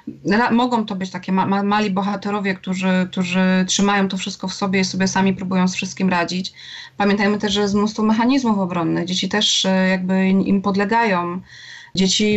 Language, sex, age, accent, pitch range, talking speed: Polish, female, 20-39, native, 190-220 Hz, 160 wpm